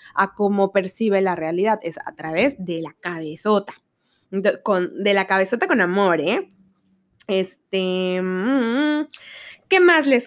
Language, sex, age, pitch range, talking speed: Spanish, female, 20-39, 195-245 Hz, 140 wpm